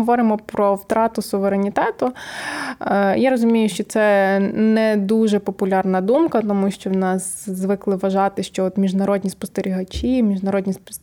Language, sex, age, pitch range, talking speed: Ukrainian, female, 20-39, 195-230 Hz, 125 wpm